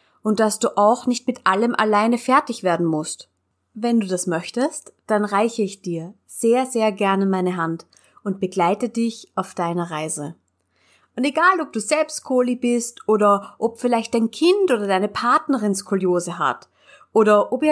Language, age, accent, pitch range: German, 30-49, German, 185-255 Hz